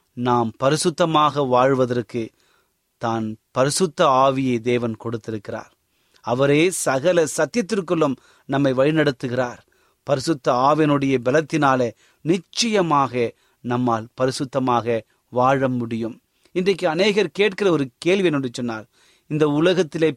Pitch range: 130-190 Hz